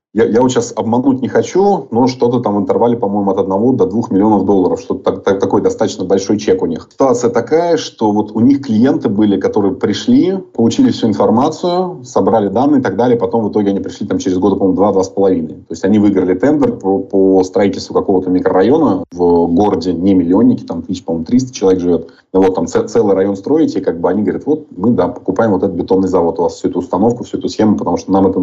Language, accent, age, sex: Russian, native, 30-49, male